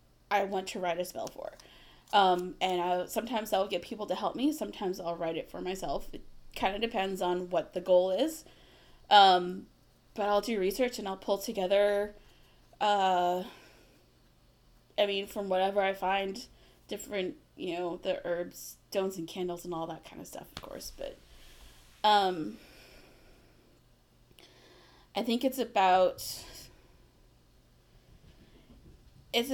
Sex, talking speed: female, 140 wpm